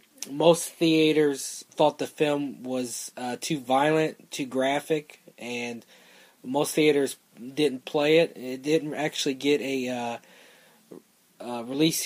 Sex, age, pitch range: male, 20-39, 125-155 Hz